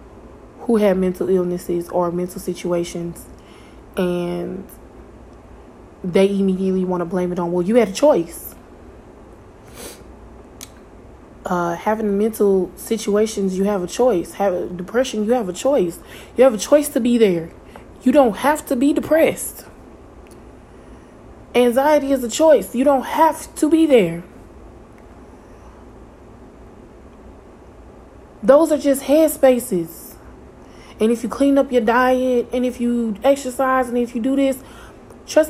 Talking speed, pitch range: 135 wpm, 190-255 Hz